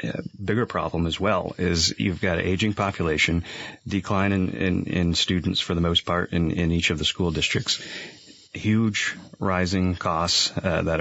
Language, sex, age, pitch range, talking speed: English, male, 30-49, 85-95 Hz, 175 wpm